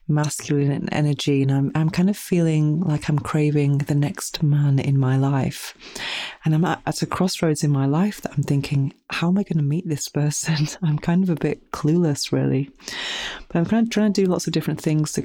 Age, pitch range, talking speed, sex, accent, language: 30-49, 135-160 Hz, 225 wpm, female, British, English